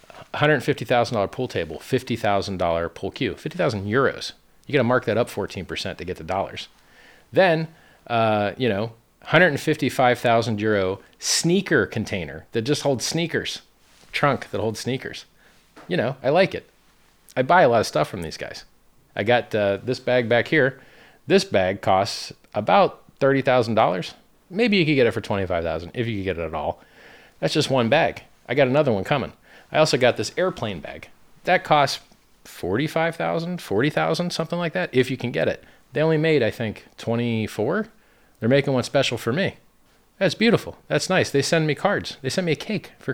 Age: 40-59